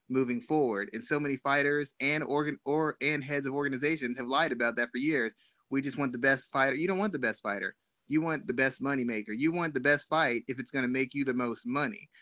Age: 30-49